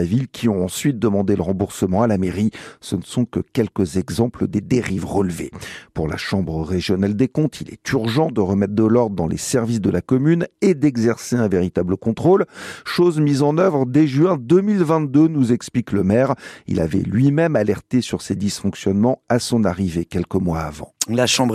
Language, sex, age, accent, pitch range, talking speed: French, male, 50-69, French, 110-150 Hz, 190 wpm